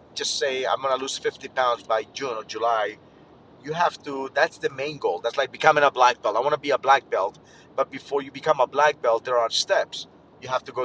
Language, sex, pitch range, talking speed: English, male, 125-155 Hz, 250 wpm